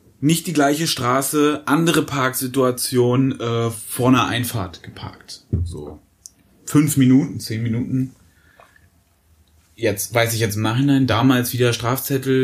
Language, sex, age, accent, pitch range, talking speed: German, male, 30-49, German, 105-140 Hz, 120 wpm